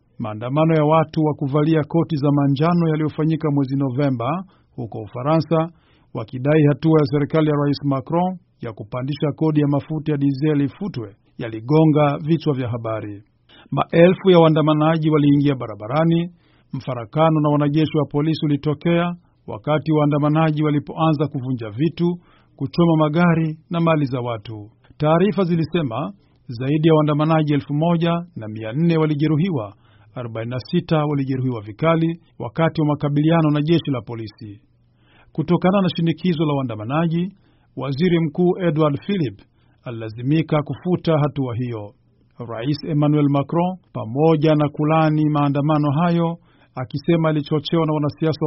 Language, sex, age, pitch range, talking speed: Swahili, male, 50-69, 135-160 Hz, 120 wpm